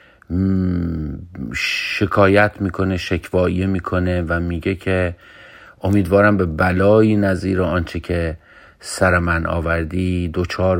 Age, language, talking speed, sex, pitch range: 50-69, Persian, 95 wpm, male, 85-100 Hz